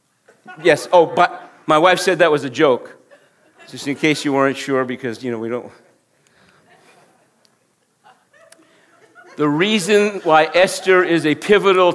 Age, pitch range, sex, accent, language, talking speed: 50-69, 165-225 Hz, male, American, English, 140 wpm